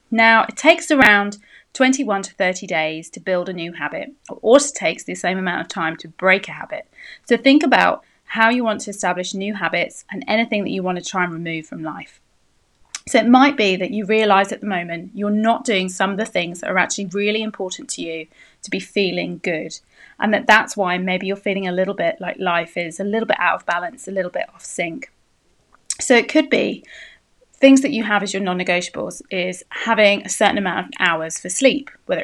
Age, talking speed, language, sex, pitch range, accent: 30-49, 220 wpm, English, female, 180-225 Hz, British